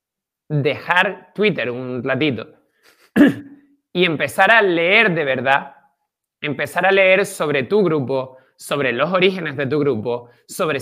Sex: male